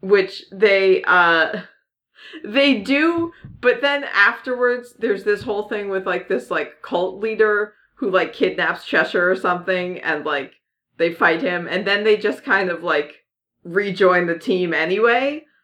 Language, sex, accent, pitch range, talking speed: English, female, American, 160-215 Hz, 155 wpm